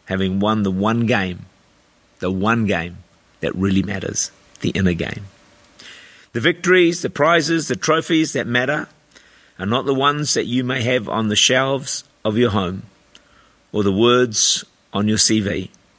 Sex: male